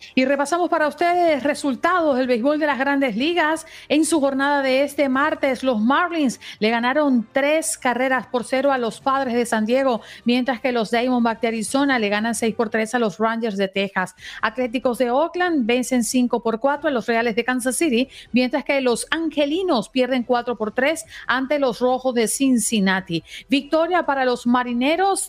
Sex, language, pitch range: female, Spanish, 225-275 Hz